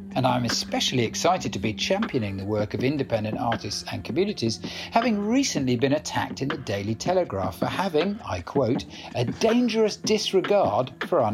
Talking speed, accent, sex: 165 wpm, British, male